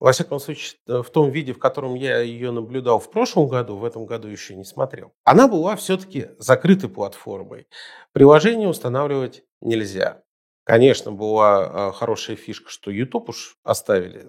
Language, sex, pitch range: Russian, male, 120-195 Hz